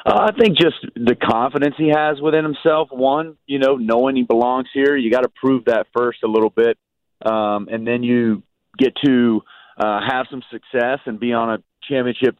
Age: 40-59